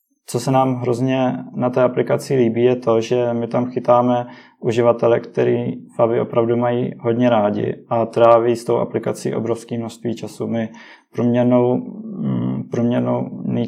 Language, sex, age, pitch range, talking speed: Czech, male, 20-39, 115-125 Hz, 135 wpm